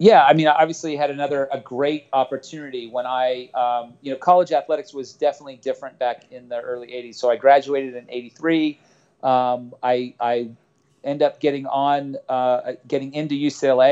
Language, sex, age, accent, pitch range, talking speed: English, male, 40-59, American, 125-150 Hz, 175 wpm